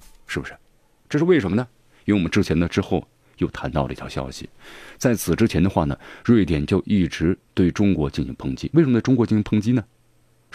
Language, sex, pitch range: Chinese, male, 80-115 Hz